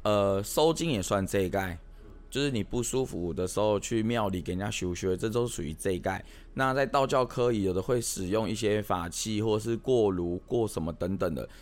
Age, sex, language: 20-39, male, Chinese